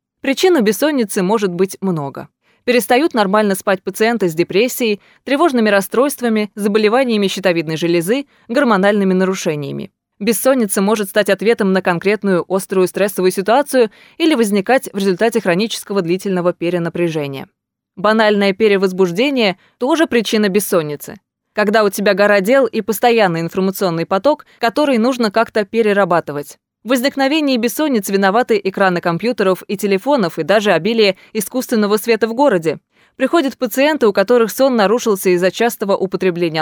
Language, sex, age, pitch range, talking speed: Russian, female, 20-39, 190-235 Hz, 125 wpm